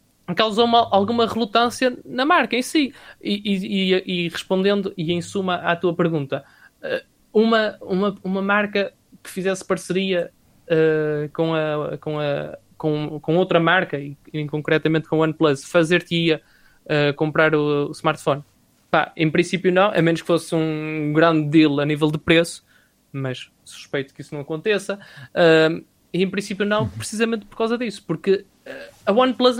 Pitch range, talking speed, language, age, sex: 160-200 Hz, 145 wpm, Portuguese, 20-39, male